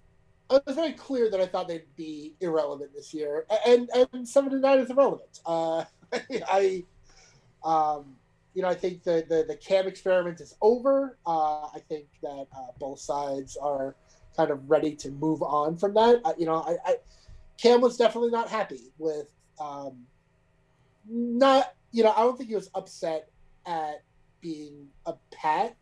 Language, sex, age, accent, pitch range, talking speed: English, male, 30-49, American, 150-205 Hz, 170 wpm